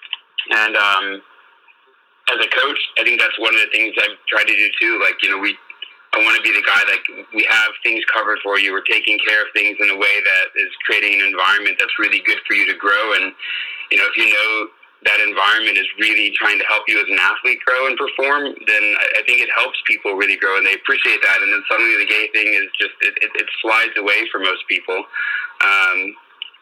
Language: English